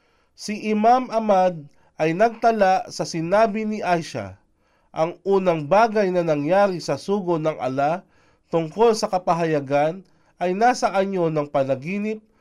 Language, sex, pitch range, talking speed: Filipino, male, 150-205 Hz, 125 wpm